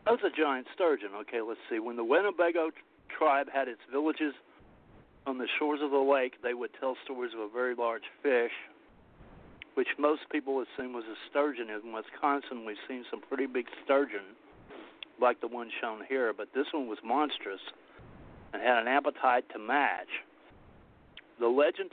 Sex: male